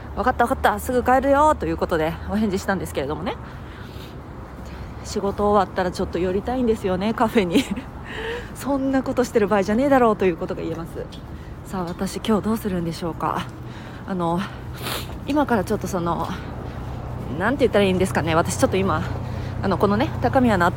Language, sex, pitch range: Japanese, female, 190-250 Hz